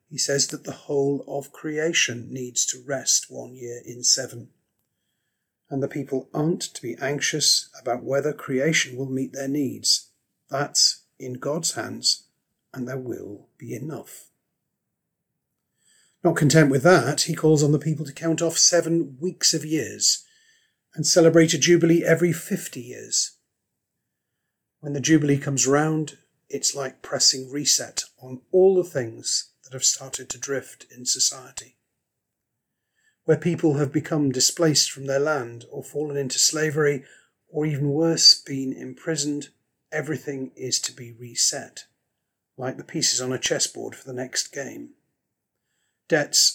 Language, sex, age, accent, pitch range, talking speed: English, male, 40-59, British, 130-160 Hz, 145 wpm